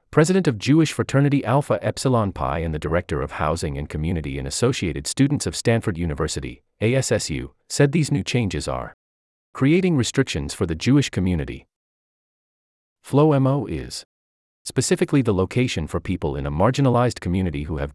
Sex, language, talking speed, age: male, English, 155 wpm, 30-49